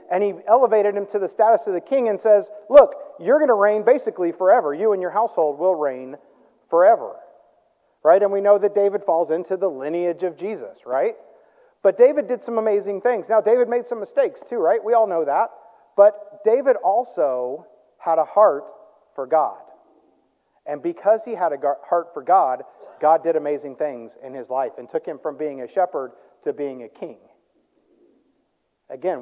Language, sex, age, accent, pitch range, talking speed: English, male, 40-59, American, 160-245 Hz, 185 wpm